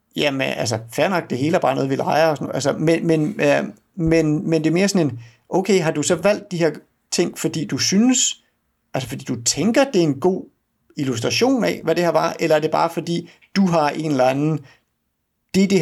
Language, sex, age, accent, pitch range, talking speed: Danish, male, 60-79, native, 130-175 Hz, 225 wpm